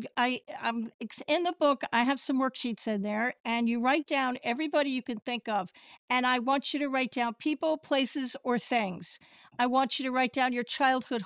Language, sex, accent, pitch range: English, female, American, 225-270 Hz